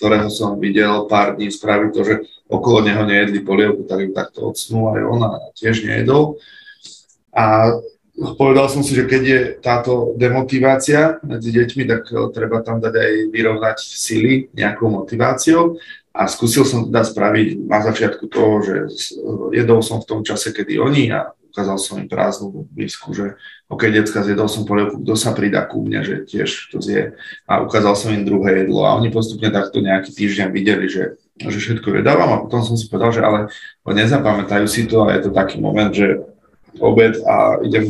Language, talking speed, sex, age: Slovak, 185 wpm, male, 30-49